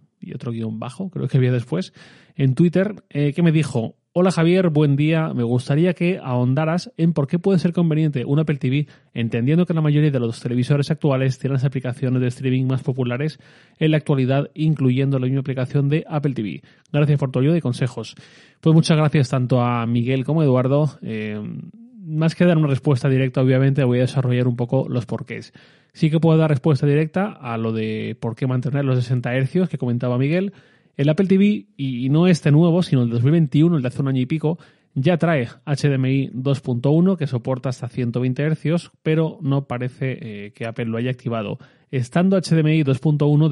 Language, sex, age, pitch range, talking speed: Spanish, male, 30-49, 125-160 Hz, 195 wpm